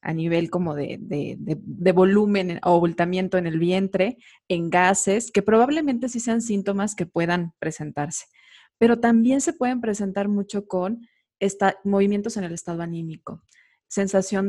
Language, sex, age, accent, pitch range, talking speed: Spanish, female, 20-39, Mexican, 175-220 Hz, 155 wpm